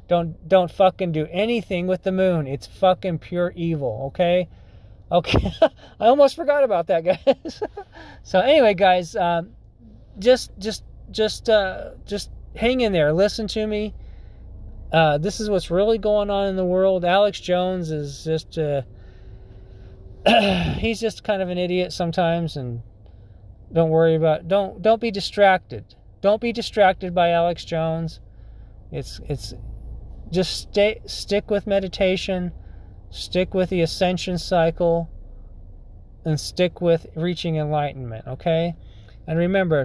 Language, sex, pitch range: English, male, 120-190 Hz